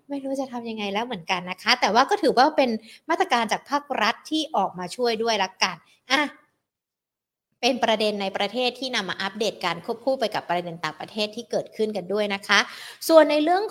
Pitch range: 195-260 Hz